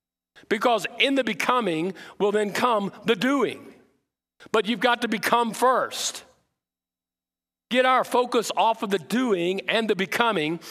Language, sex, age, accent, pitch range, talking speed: English, male, 50-69, American, 180-235 Hz, 140 wpm